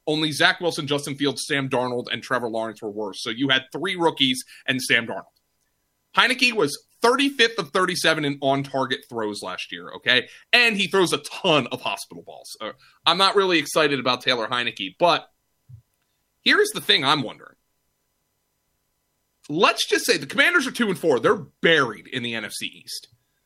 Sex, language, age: male, English, 30-49